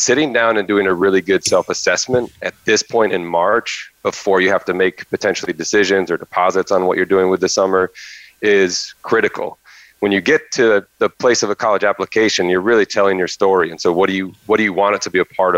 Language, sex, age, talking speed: English, male, 30-49, 230 wpm